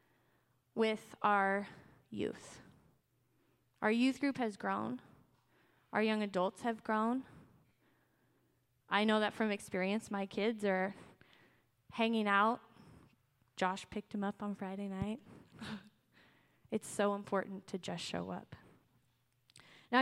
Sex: female